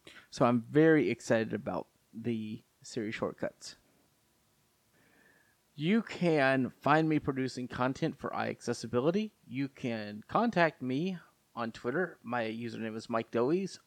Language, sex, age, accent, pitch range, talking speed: English, male, 30-49, American, 115-140 Hz, 115 wpm